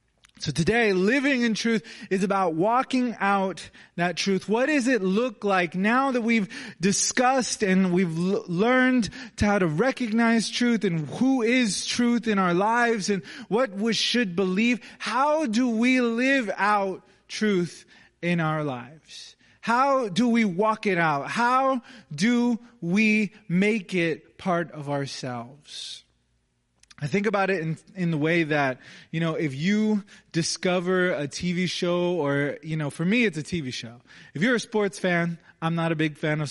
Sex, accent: male, American